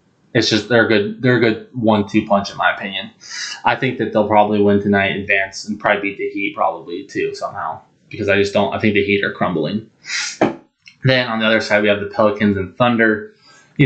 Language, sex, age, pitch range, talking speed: English, male, 20-39, 100-115 Hz, 220 wpm